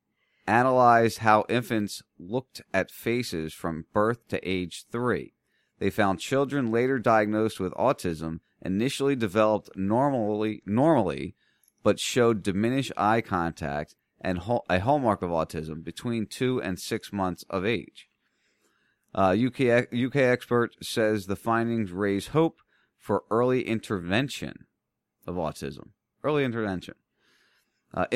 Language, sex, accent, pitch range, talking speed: English, male, American, 95-120 Hz, 120 wpm